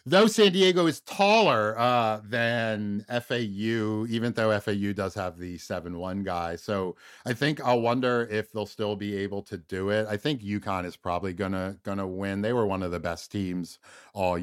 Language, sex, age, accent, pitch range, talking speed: English, male, 50-69, American, 90-120 Hz, 185 wpm